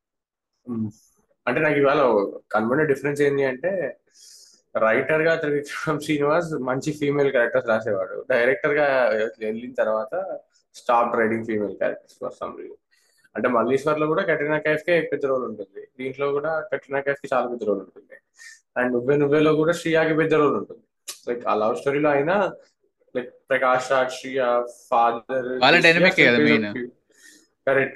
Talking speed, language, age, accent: 135 wpm, Telugu, 20-39, native